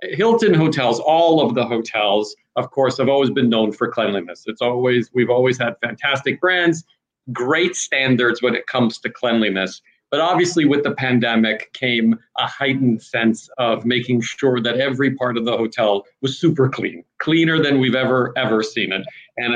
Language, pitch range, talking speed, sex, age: Spanish, 120-140 Hz, 175 wpm, male, 40-59